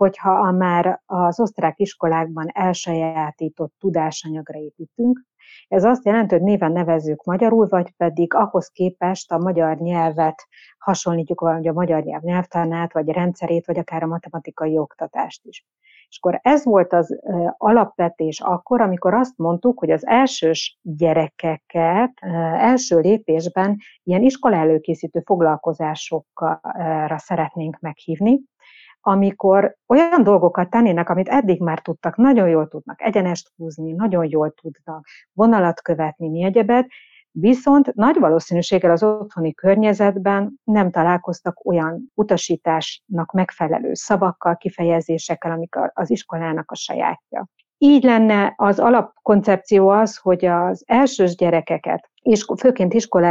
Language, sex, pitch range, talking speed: German, female, 165-205 Hz, 125 wpm